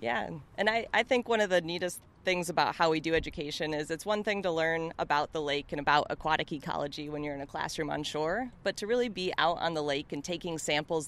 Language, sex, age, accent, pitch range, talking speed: English, female, 30-49, American, 150-180 Hz, 250 wpm